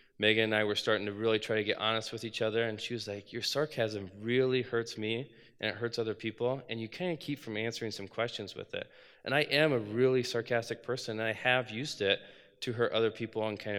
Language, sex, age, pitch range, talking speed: English, male, 20-39, 105-130 Hz, 250 wpm